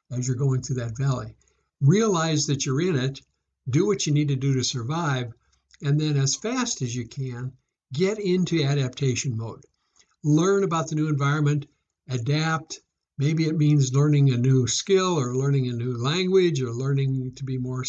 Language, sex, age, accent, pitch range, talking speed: English, male, 60-79, American, 130-160 Hz, 180 wpm